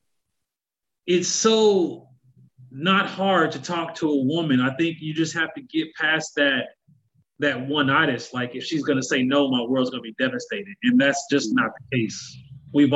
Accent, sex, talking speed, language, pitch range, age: American, male, 175 wpm, English, 130-165 Hz, 30-49